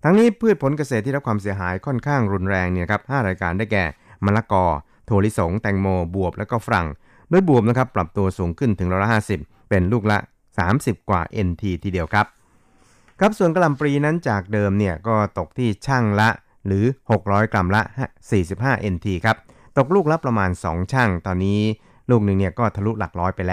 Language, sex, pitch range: Thai, male, 95-120 Hz